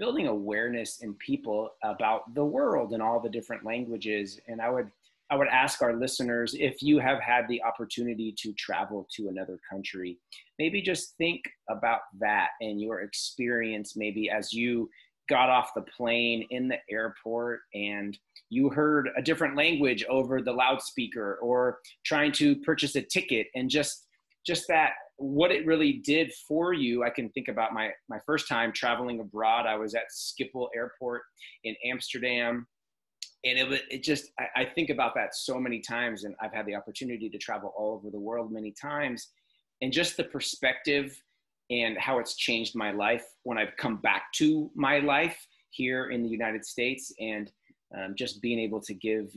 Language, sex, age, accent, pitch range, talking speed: English, male, 30-49, American, 110-135 Hz, 175 wpm